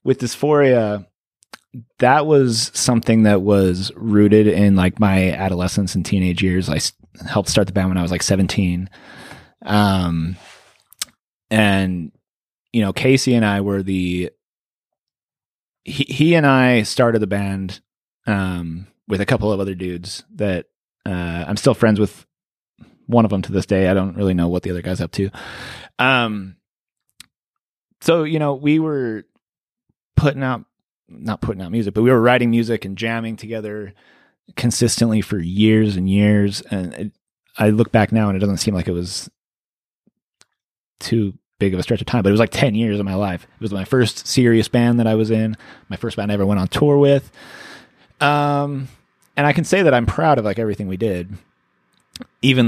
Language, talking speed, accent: English, 180 wpm, American